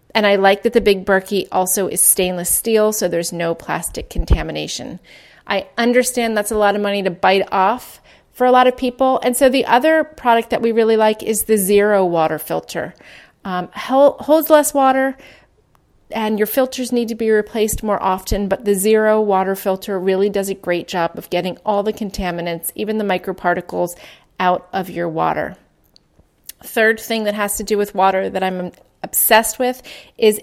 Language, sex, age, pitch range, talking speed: English, female, 30-49, 180-220 Hz, 185 wpm